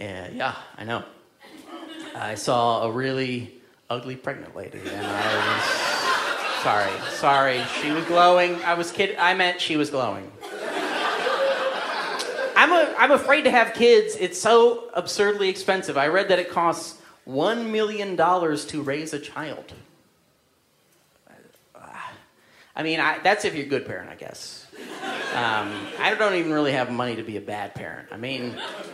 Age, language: 30-49, English